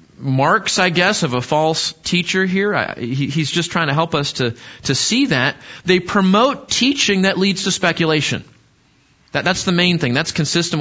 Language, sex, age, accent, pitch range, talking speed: English, male, 30-49, American, 140-190 Hz, 190 wpm